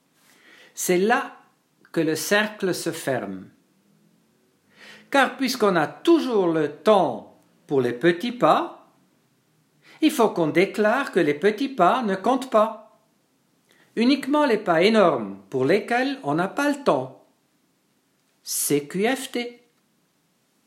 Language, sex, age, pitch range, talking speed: English, male, 60-79, 145-225 Hz, 115 wpm